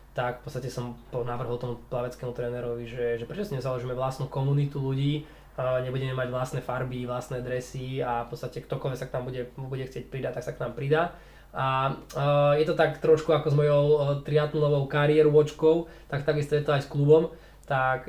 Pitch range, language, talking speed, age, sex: 125-145 Hz, Czech, 190 wpm, 20-39, male